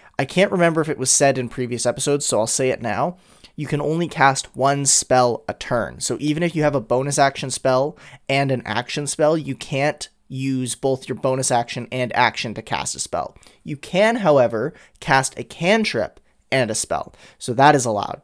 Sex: male